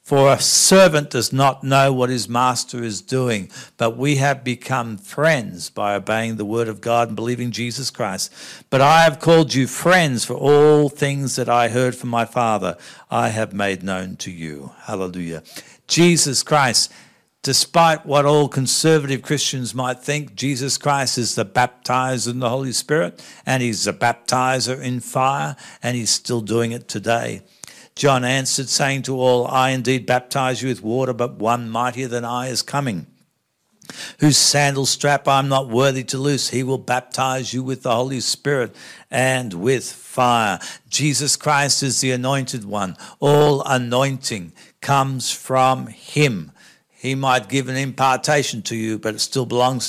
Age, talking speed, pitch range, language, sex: 60-79, 165 wpm, 120-135 Hz, English, male